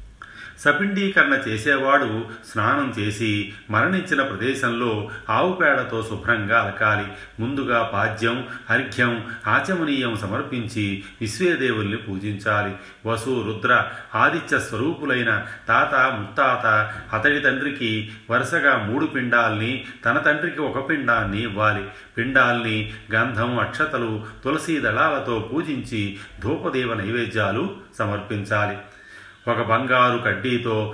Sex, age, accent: male, 30-49, native